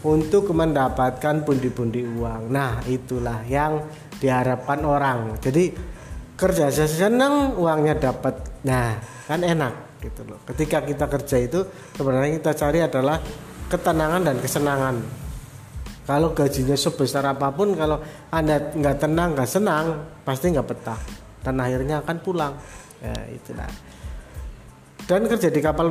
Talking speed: 125 wpm